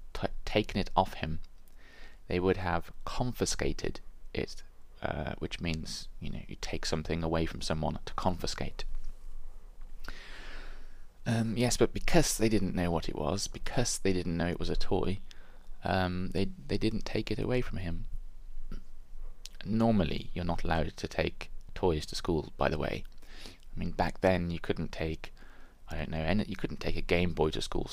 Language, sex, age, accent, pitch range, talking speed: English, male, 20-39, British, 80-95 Hz, 175 wpm